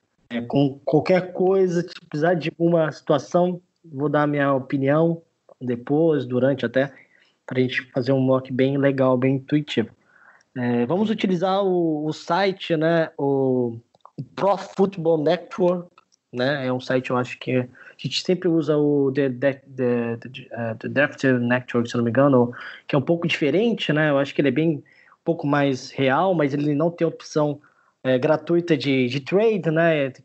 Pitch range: 135-170 Hz